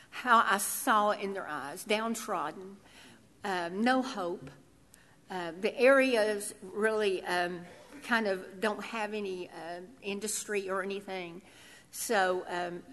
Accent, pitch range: American, 205-270 Hz